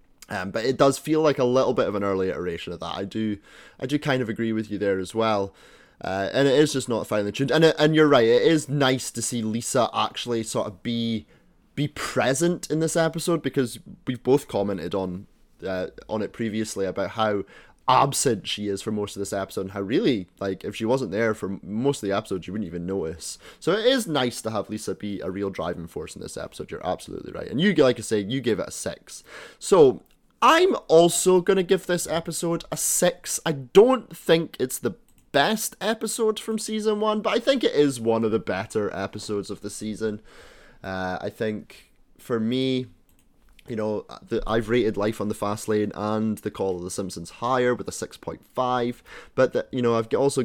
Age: 20-39